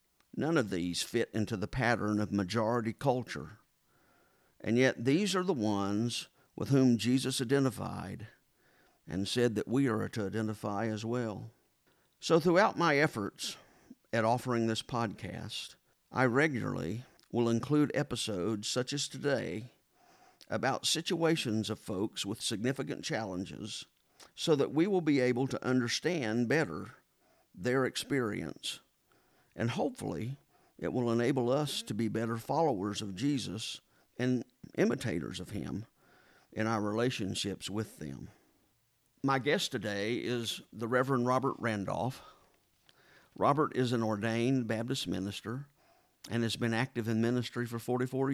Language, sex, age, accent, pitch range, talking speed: English, male, 50-69, American, 110-130 Hz, 130 wpm